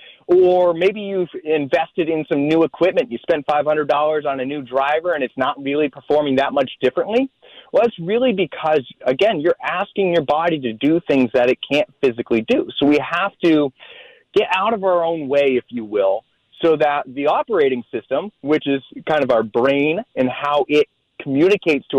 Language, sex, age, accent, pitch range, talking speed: English, male, 30-49, American, 135-195 Hz, 190 wpm